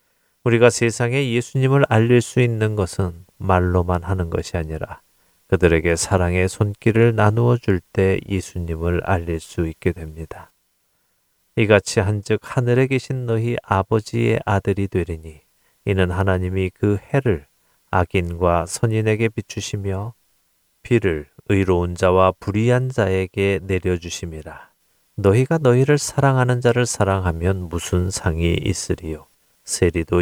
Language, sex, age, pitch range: Korean, male, 40-59, 90-115 Hz